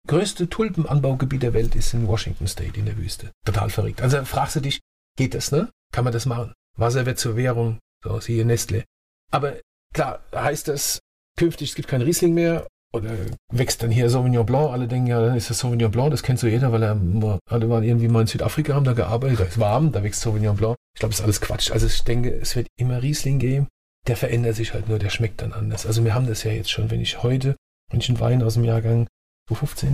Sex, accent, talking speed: male, German, 235 wpm